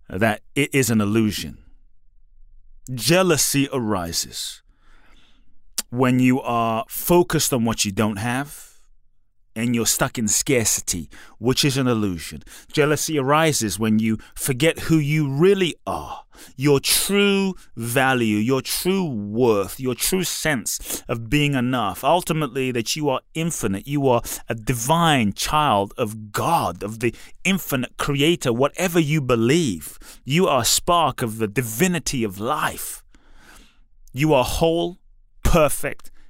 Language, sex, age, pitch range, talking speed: English, male, 30-49, 115-155 Hz, 130 wpm